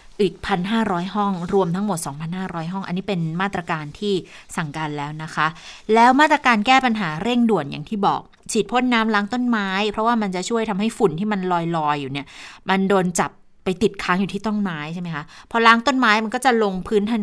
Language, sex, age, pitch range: Thai, female, 20-39, 175-220 Hz